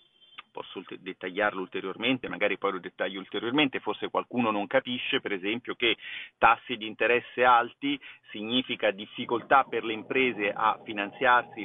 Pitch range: 110-175 Hz